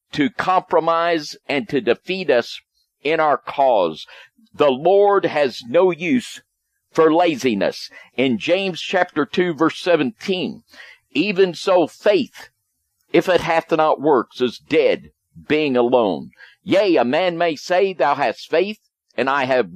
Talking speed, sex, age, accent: 135 wpm, male, 50-69, American